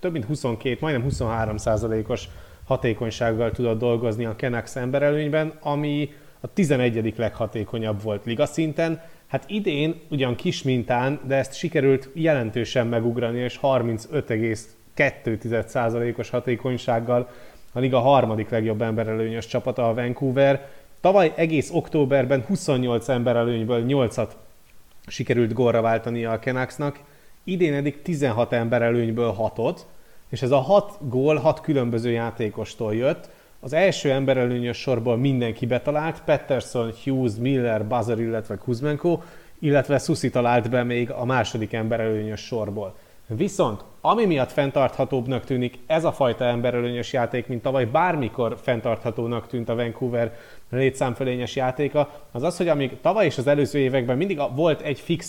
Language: Hungarian